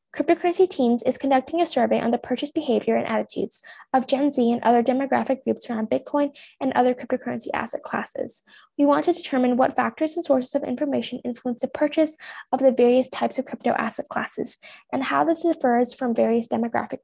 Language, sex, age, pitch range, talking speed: English, female, 10-29, 245-290 Hz, 190 wpm